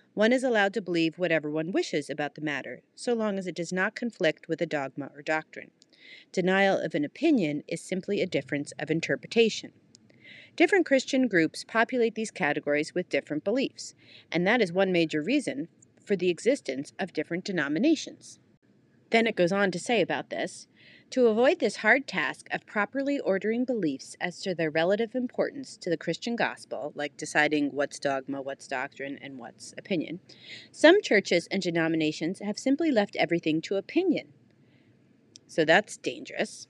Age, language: 40-59, English